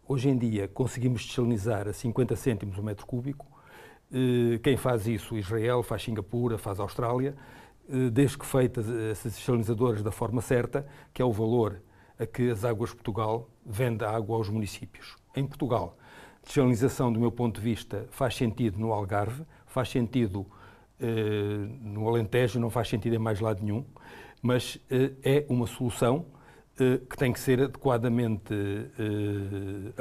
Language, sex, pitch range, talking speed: Portuguese, male, 115-135 Hz, 150 wpm